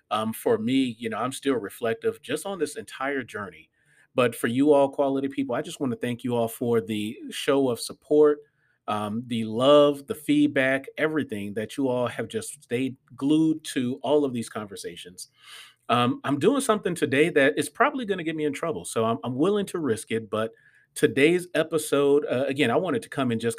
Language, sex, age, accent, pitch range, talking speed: English, male, 40-59, American, 120-150 Hz, 205 wpm